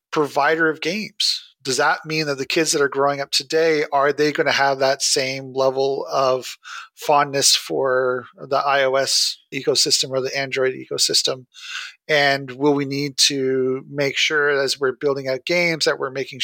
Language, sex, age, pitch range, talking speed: English, male, 40-59, 135-150 Hz, 170 wpm